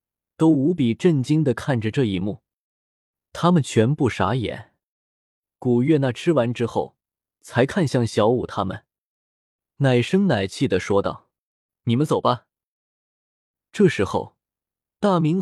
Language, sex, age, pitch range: Chinese, male, 20-39, 105-155 Hz